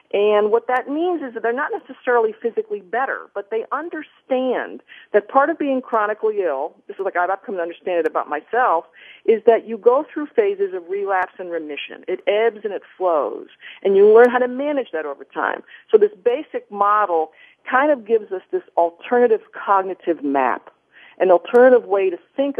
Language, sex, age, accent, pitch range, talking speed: English, female, 50-69, American, 190-315 Hz, 190 wpm